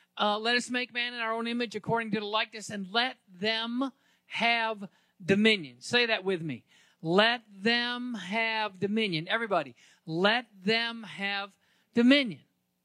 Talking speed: 145 wpm